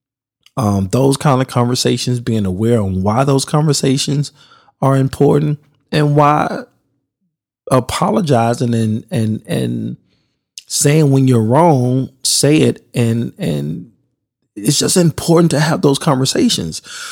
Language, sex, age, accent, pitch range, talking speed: English, male, 20-39, American, 110-135 Hz, 120 wpm